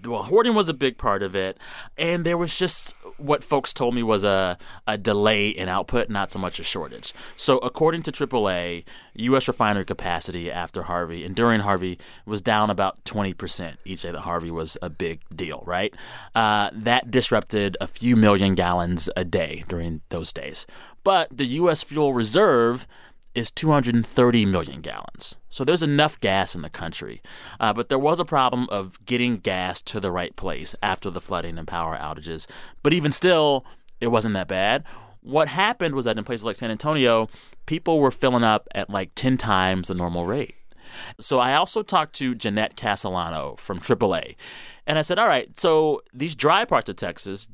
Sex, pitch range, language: male, 95-130 Hz, English